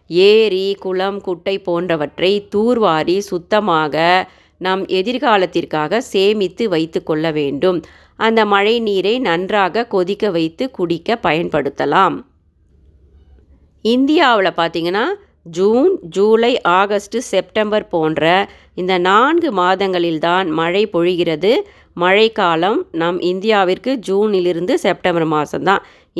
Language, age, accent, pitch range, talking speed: Tamil, 30-49, native, 170-210 Hz, 85 wpm